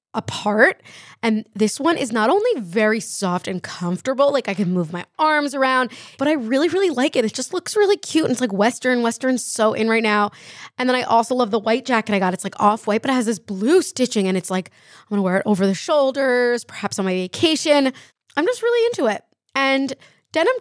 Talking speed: 230 wpm